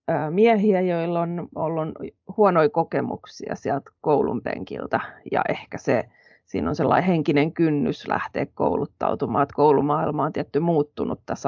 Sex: female